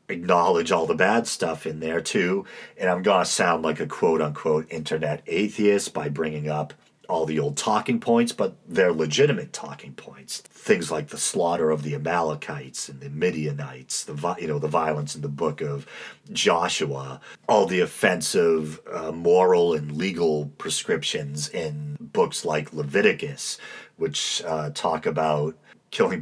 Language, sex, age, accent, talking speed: English, male, 40-59, American, 155 wpm